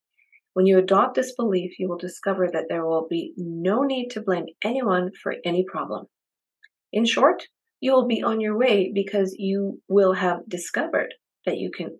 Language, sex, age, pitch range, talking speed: English, female, 40-59, 180-230 Hz, 180 wpm